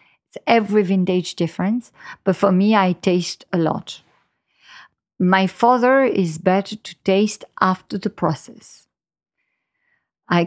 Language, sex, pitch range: English, female, 170-210 Hz